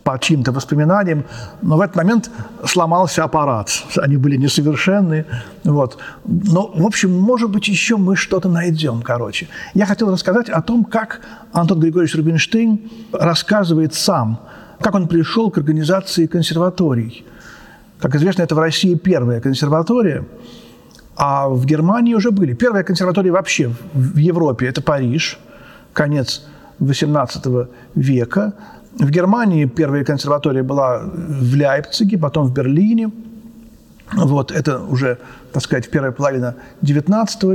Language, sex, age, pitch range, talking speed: Russian, male, 50-69, 140-195 Hz, 130 wpm